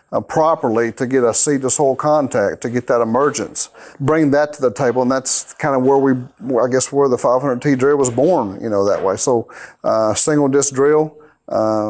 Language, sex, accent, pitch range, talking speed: English, male, American, 115-140 Hz, 210 wpm